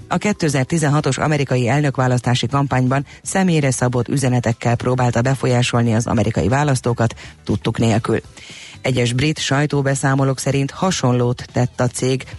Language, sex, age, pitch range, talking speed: Hungarian, female, 30-49, 115-140 Hz, 110 wpm